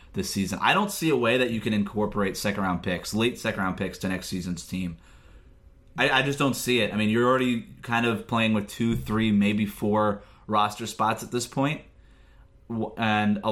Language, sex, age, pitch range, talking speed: English, male, 20-39, 95-110 Hz, 200 wpm